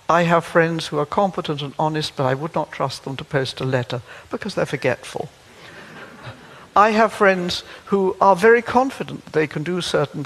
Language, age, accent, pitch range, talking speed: English, 60-79, British, 140-195 Hz, 185 wpm